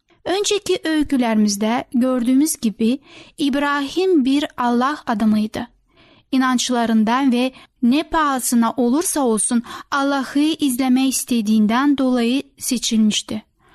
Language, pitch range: Turkish, 235-300 Hz